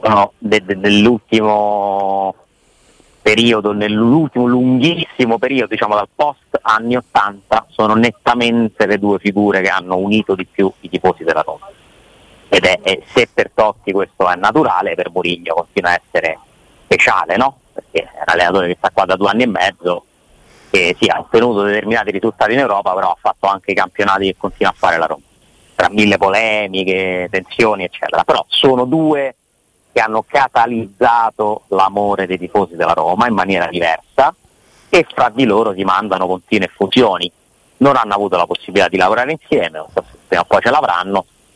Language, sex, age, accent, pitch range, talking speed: Italian, male, 30-49, native, 95-115 Hz, 165 wpm